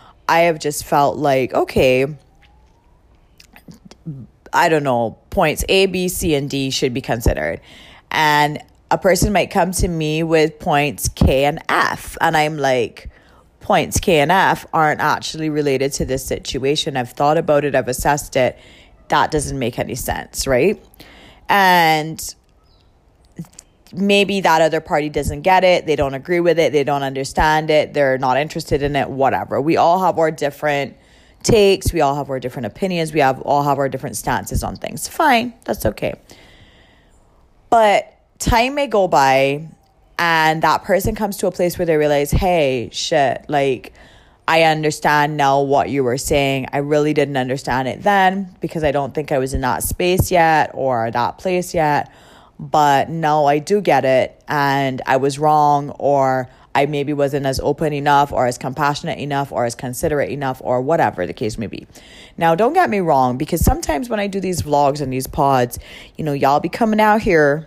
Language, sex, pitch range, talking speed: English, female, 130-160 Hz, 175 wpm